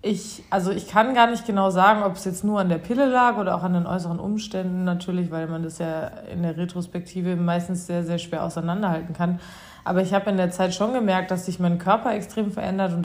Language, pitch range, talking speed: German, 170-200 Hz, 235 wpm